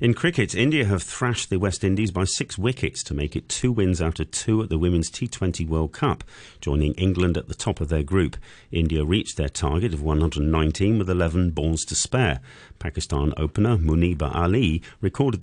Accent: British